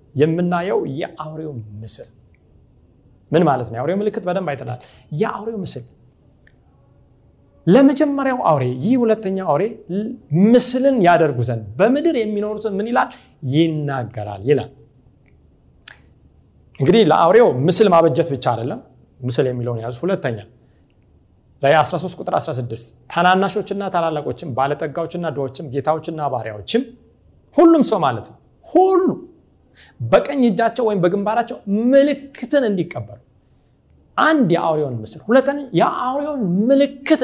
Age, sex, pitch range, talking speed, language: 40-59, male, 135-215 Hz, 60 wpm, Amharic